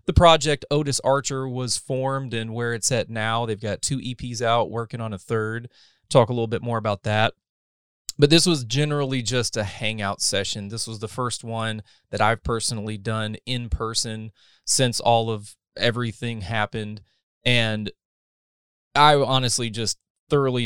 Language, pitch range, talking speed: English, 105-130 Hz, 165 wpm